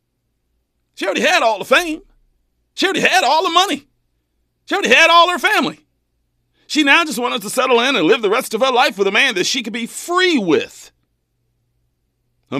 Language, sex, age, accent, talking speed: English, male, 40-59, American, 200 wpm